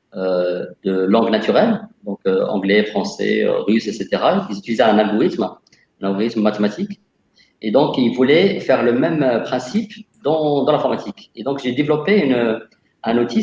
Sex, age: male, 50-69